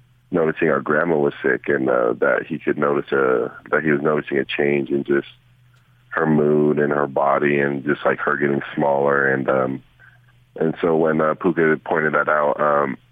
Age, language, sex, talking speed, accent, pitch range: 30-49, English, male, 190 wpm, American, 75-120 Hz